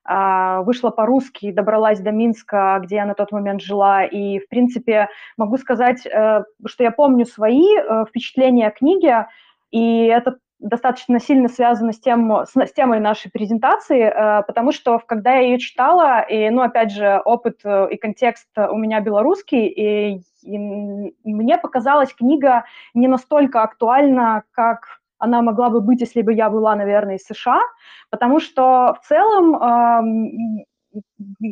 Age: 20-39